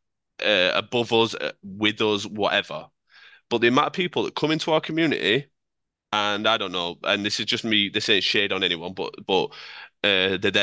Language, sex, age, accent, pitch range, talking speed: English, male, 20-39, British, 105-140 Hz, 190 wpm